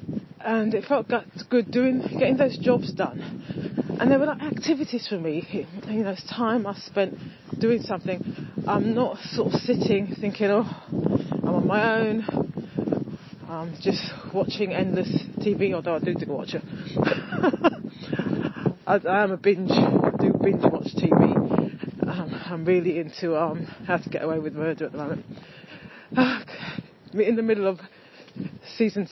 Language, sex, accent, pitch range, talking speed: English, female, British, 180-230 Hz, 150 wpm